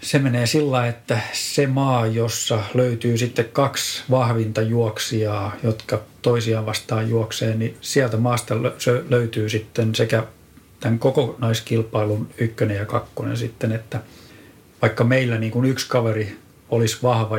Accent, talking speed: native, 120 wpm